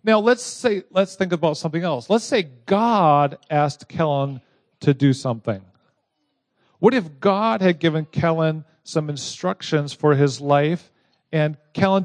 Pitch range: 145-190 Hz